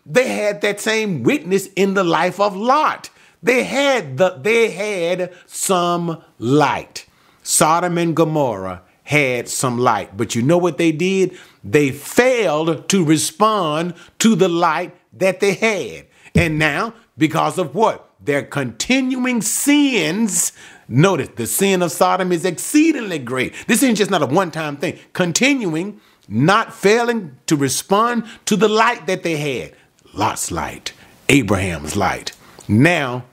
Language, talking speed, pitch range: English, 140 wpm, 130-195 Hz